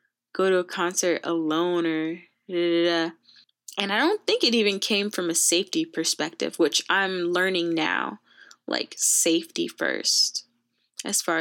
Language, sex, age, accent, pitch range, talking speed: English, female, 10-29, American, 170-210 Hz, 160 wpm